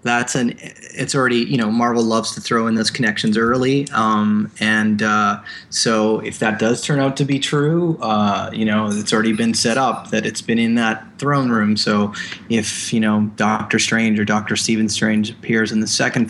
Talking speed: 205 wpm